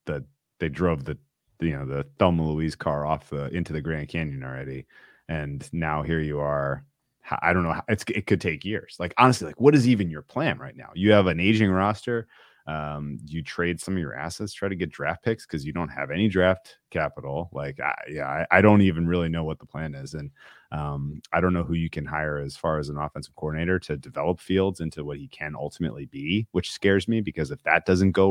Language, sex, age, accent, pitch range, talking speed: English, male, 30-49, American, 75-95 Hz, 225 wpm